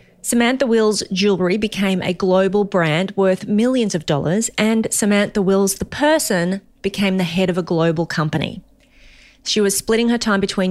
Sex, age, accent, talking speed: female, 30-49, Australian, 165 wpm